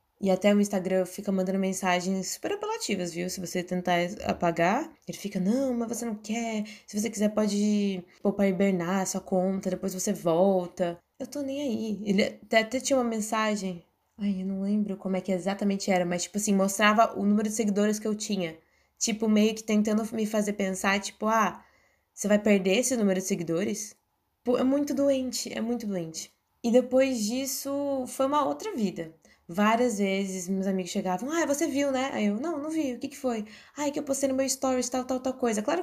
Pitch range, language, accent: 180-250 Hz, Portuguese, Brazilian